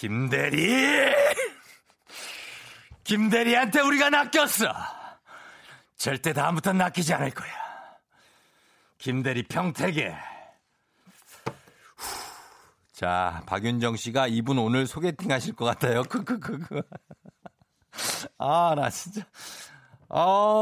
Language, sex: Korean, male